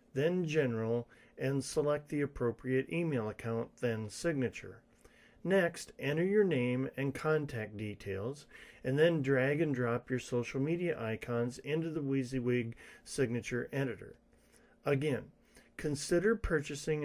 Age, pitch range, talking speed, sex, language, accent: 40-59, 120-155 Hz, 120 wpm, male, English, American